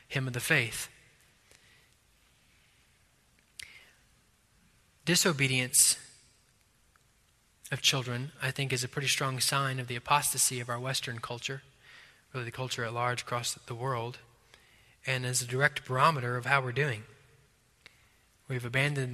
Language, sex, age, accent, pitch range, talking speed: English, male, 20-39, American, 125-150 Hz, 125 wpm